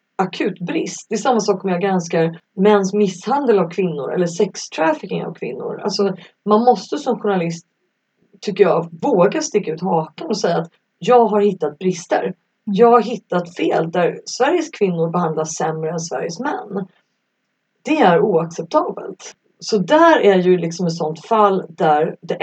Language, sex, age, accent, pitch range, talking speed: Swedish, female, 30-49, native, 170-215 Hz, 165 wpm